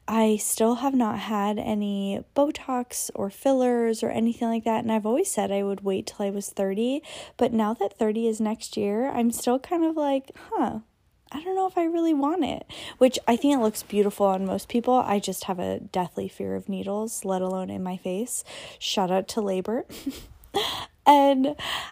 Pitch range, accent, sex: 200-235 Hz, American, female